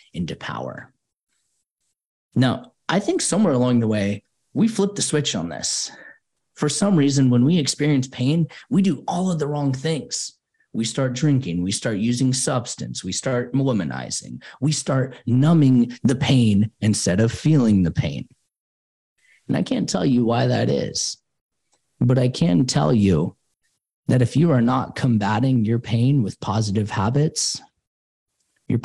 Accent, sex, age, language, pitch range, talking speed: American, male, 30-49, English, 110-140 Hz, 155 wpm